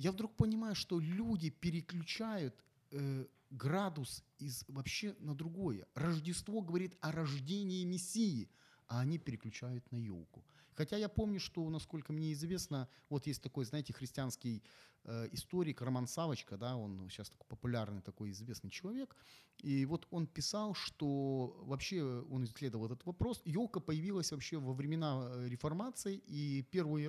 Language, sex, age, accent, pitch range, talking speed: Ukrainian, male, 30-49, native, 130-175 Hz, 140 wpm